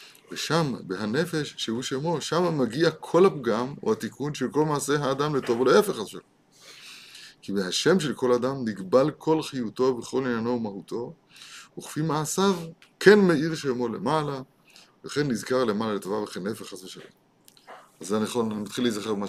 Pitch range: 115-155 Hz